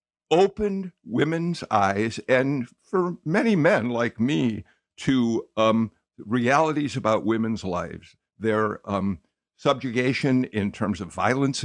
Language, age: English, 60-79